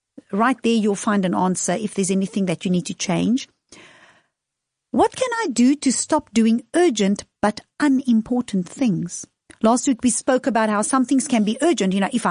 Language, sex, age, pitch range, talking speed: English, female, 50-69, 210-275 Hz, 190 wpm